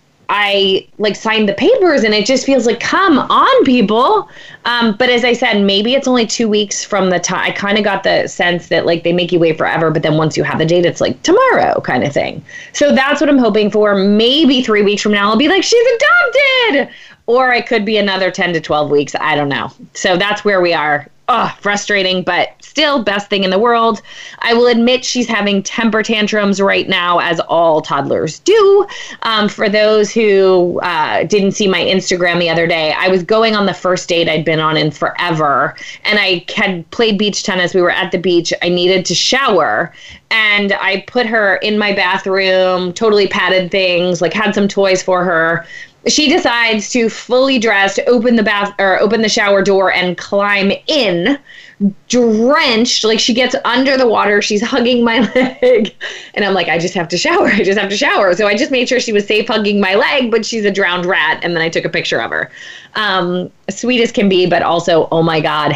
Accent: American